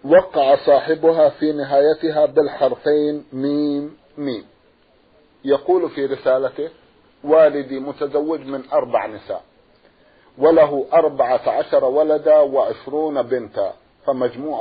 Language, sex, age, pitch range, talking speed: Arabic, male, 50-69, 140-165 Hz, 90 wpm